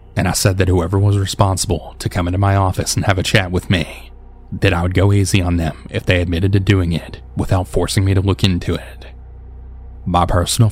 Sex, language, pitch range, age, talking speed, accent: male, English, 80-100 Hz, 20-39, 225 wpm, American